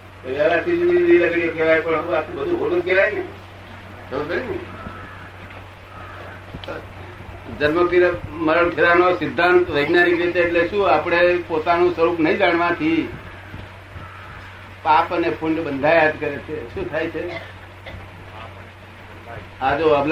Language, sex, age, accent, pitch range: Gujarati, male, 60-79, native, 95-160 Hz